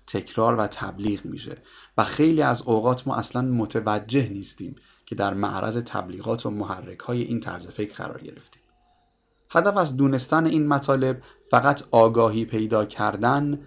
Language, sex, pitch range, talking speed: Persian, male, 100-135 Hz, 140 wpm